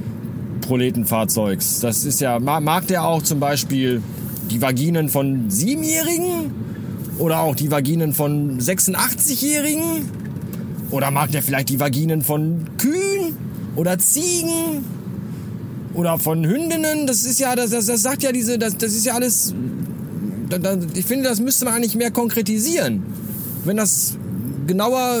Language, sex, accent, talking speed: German, male, German, 135 wpm